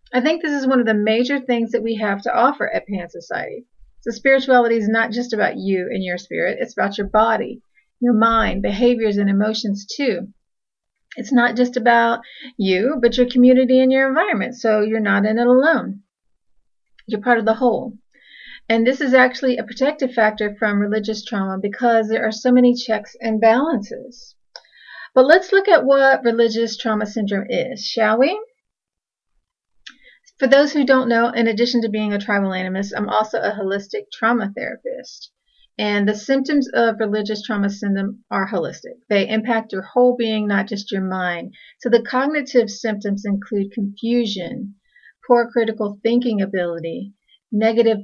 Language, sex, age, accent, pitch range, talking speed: English, female, 40-59, American, 210-245 Hz, 170 wpm